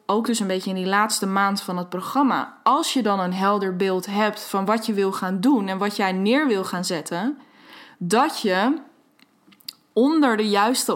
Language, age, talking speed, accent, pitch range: Dutch, 20-39, 195 wpm, Dutch, 195-245 Hz